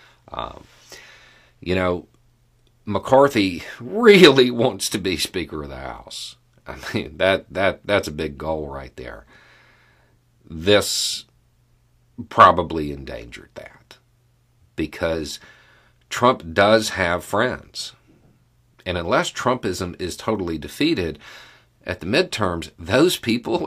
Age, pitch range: 40-59, 80-120 Hz